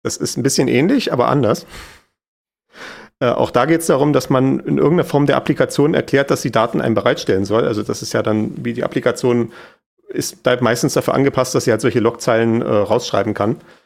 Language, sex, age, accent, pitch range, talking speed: German, male, 40-59, German, 115-130 Hz, 205 wpm